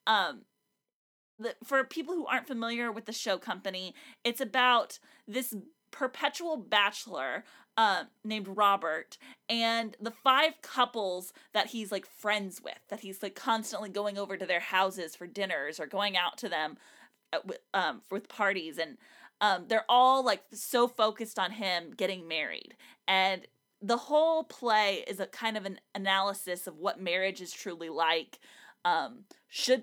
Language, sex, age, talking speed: English, female, 20-39, 155 wpm